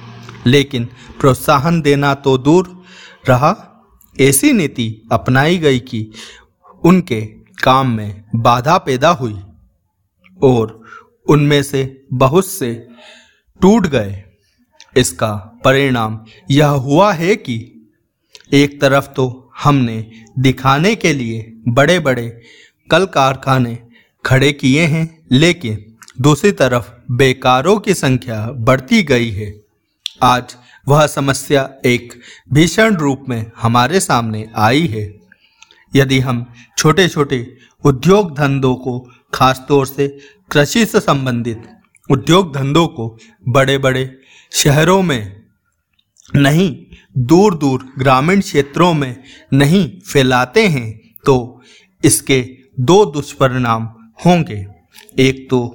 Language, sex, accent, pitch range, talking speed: Hindi, male, native, 120-150 Hz, 105 wpm